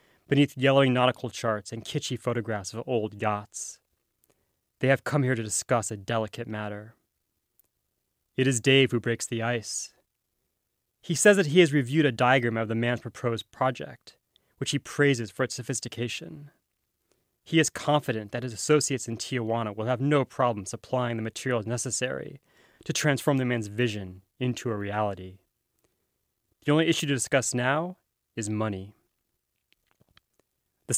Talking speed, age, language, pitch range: 150 wpm, 20-39, English, 110-135 Hz